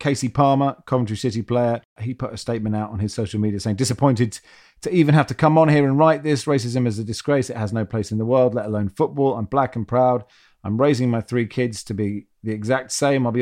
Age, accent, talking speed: 40-59, British, 250 wpm